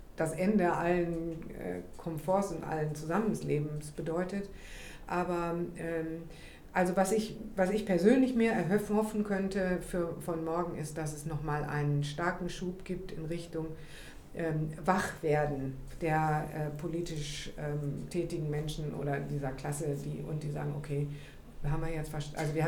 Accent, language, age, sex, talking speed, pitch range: German, German, 50-69, female, 145 wpm, 150-175 Hz